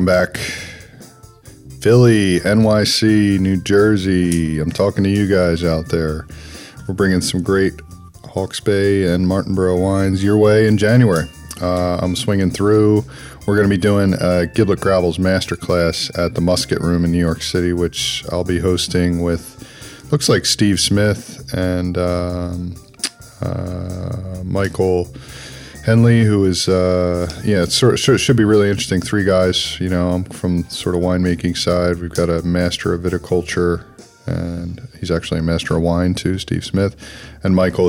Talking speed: 155 wpm